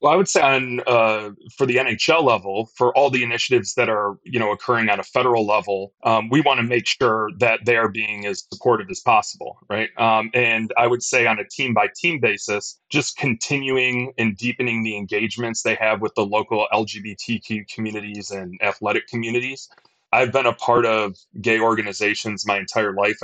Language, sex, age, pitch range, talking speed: English, male, 30-49, 105-120 Hz, 195 wpm